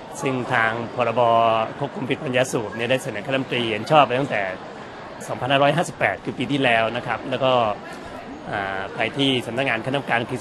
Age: 30-49